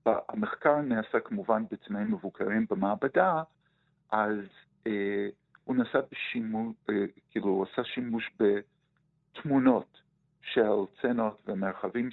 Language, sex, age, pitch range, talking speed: Hebrew, male, 50-69, 100-160 Hz, 80 wpm